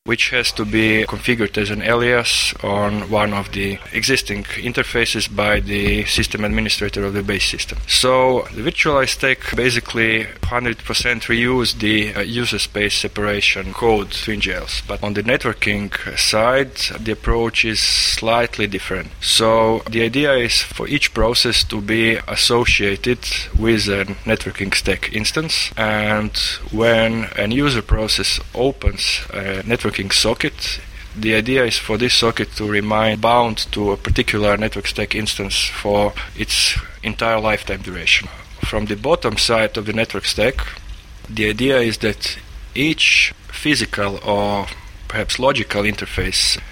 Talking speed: 140 wpm